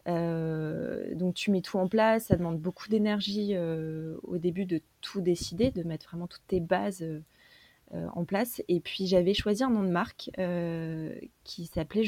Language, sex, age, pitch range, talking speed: French, female, 20-39, 170-200 Hz, 185 wpm